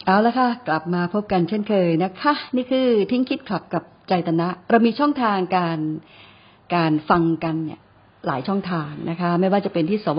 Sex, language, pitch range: female, Thai, 165-200 Hz